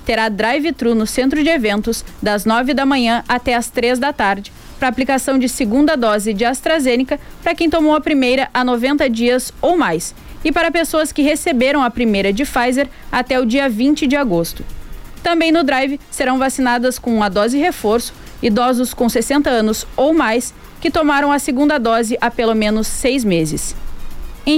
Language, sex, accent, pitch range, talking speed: Portuguese, female, Brazilian, 230-285 Hz, 180 wpm